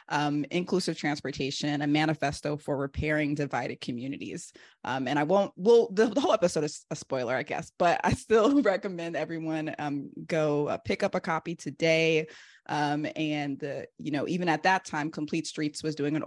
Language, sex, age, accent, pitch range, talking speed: English, female, 20-39, American, 150-180 Hz, 180 wpm